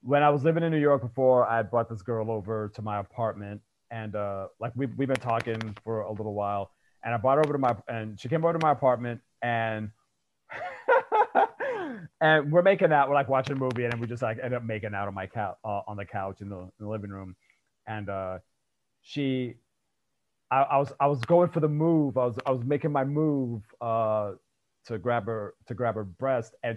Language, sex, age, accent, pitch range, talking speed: English, male, 30-49, American, 110-140 Hz, 225 wpm